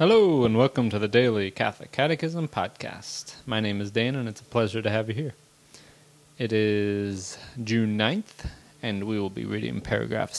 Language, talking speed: English, 180 wpm